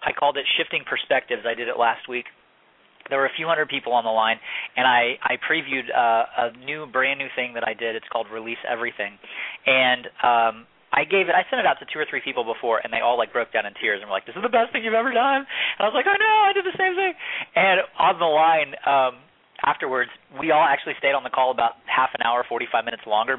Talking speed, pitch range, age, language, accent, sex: 260 wpm, 120-145 Hz, 30-49, English, American, male